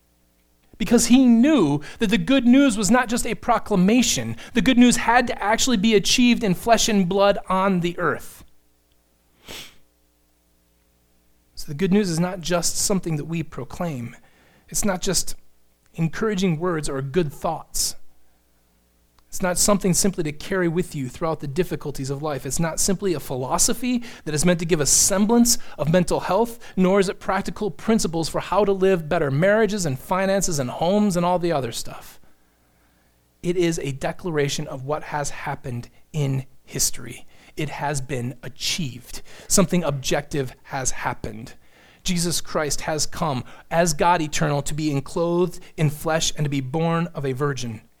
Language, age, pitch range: English, 30-49, 135-200 Hz